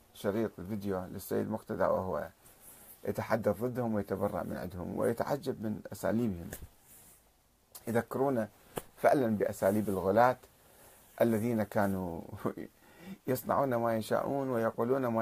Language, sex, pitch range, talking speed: Arabic, male, 95-125 Hz, 95 wpm